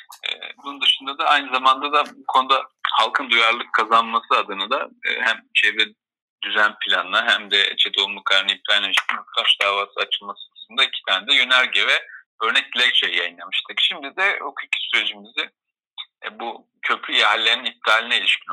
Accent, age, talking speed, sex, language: native, 40-59, 145 wpm, male, Turkish